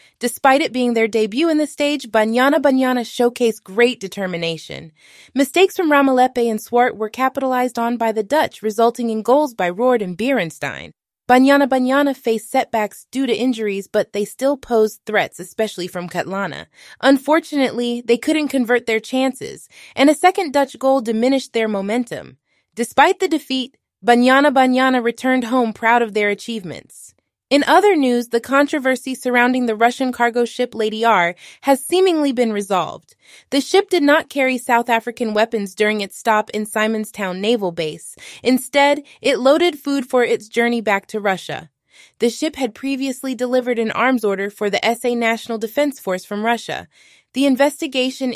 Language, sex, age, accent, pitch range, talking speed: English, female, 20-39, American, 215-265 Hz, 160 wpm